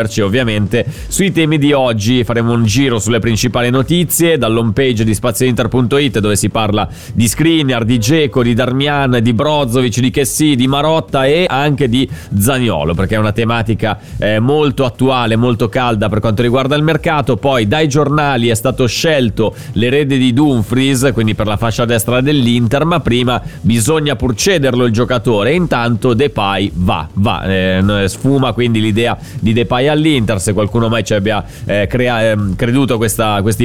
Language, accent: Italian, native